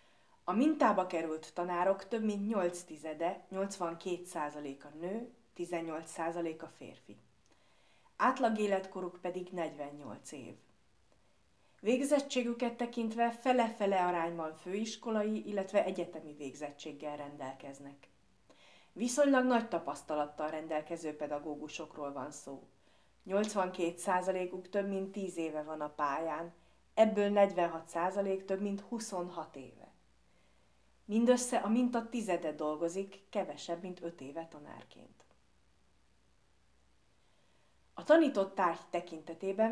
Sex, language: female, Hungarian